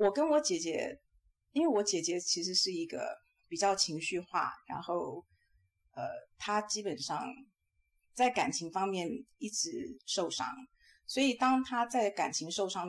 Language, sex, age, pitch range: Chinese, female, 30-49, 170-225 Hz